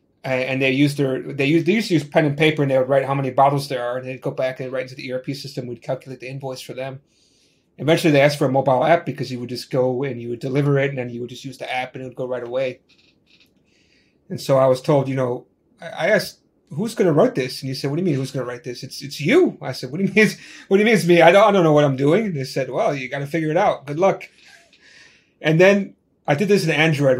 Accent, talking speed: American, 300 wpm